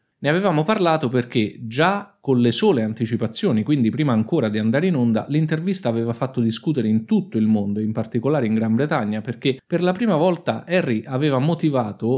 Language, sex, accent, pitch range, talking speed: Italian, male, native, 115-155 Hz, 180 wpm